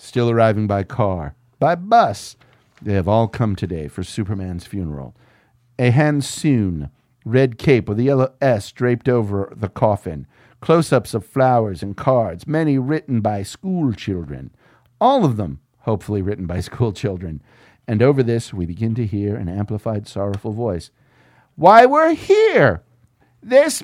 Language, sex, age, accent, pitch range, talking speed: English, male, 50-69, American, 105-160 Hz, 145 wpm